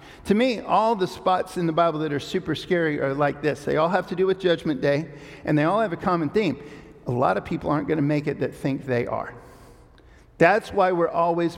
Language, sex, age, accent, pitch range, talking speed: English, male, 50-69, American, 140-180 Hz, 245 wpm